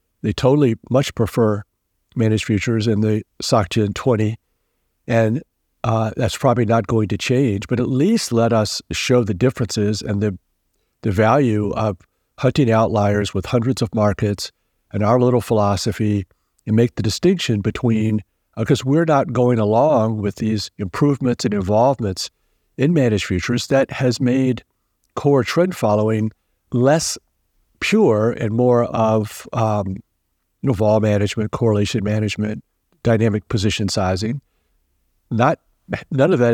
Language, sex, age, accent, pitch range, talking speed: English, male, 60-79, American, 100-120 Hz, 140 wpm